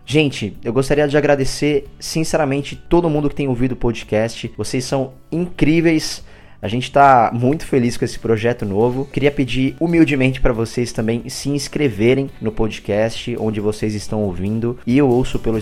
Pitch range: 110-135 Hz